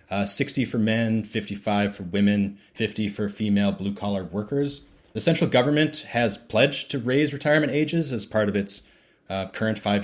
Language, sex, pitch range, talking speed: English, male, 105-125 Hz, 175 wpm